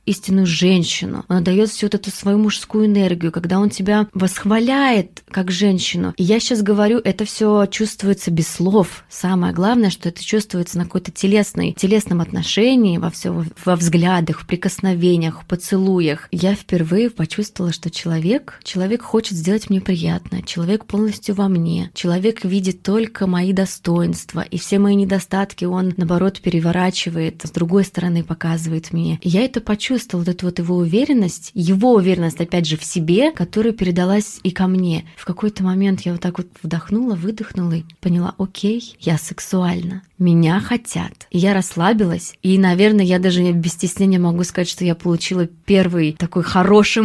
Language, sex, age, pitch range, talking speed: Russian, female, 20-39, 175-205 Hz, 160 wpm